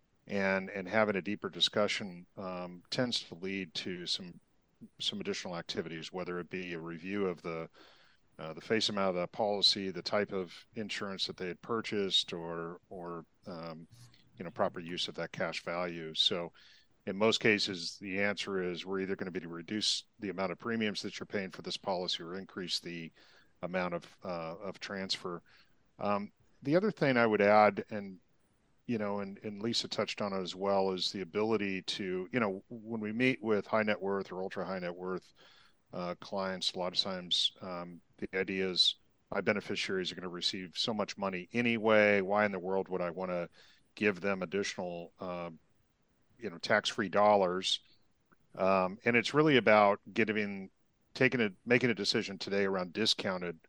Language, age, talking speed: English, 40-59, 185 wpm